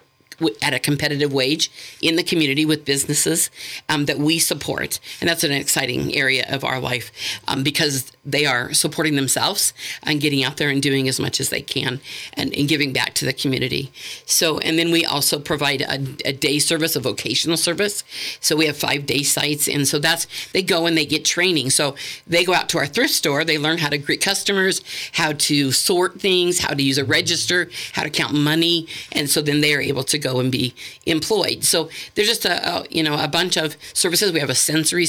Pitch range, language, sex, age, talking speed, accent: 140-160 Hz, English, female, 50-69, 215 wpm, American